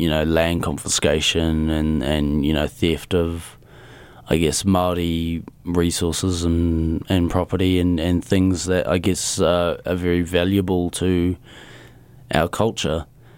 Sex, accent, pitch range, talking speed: male, Australian, 85-95 Hz, 135 wpm